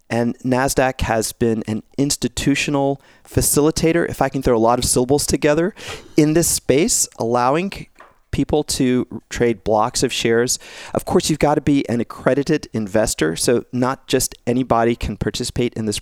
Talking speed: 160 wpm